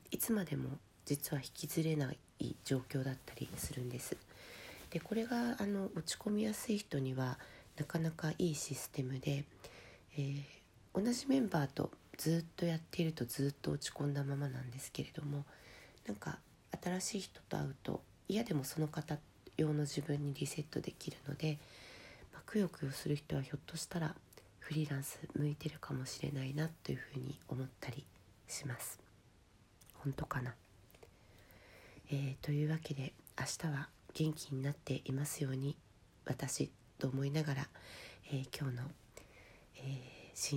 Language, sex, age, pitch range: Japanese, female, 40-59, 135-155 Hz